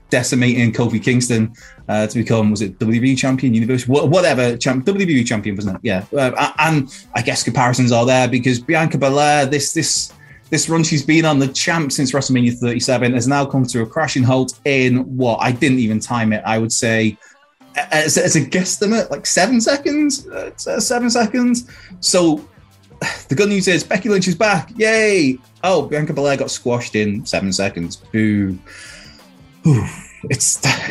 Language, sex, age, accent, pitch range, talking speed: English, male, 20-39, British, 110-160 Hz, 170 wpm